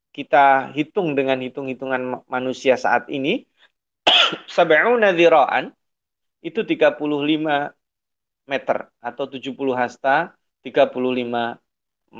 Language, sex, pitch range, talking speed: Indonesian, male, 130-170 Hz, 70 wpm